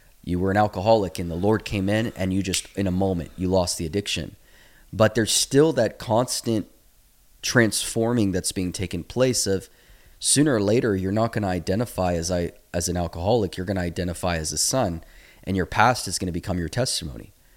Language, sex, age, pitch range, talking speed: English, male, 30-49, 90-110 Hz, 200 wpm